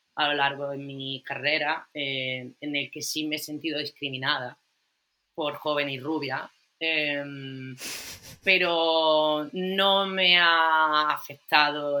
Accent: Spanish